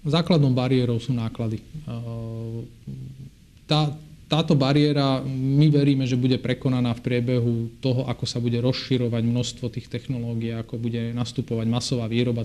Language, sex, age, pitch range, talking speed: Slovak, male, 40-59, 115-135 Hz, 130 wpm